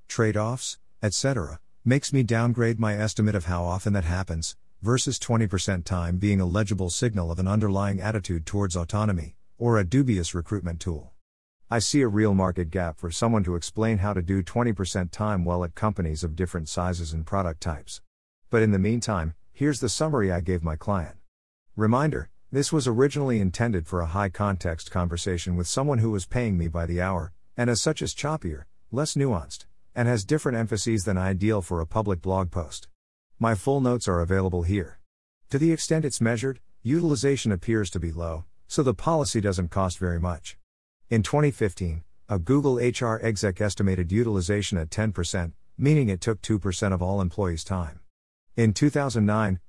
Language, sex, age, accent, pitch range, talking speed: English, male, 50-69, American, 90-115 Hz, 175 wpm